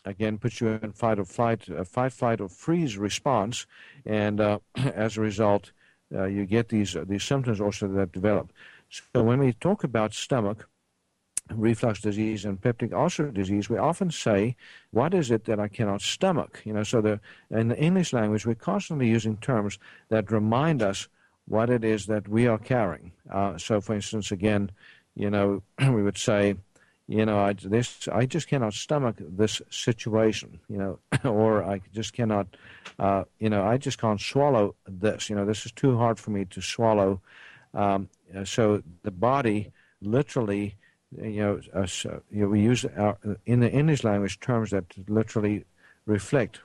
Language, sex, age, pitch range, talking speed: English, male, 60-79, 100-120 Hz, 175 wpm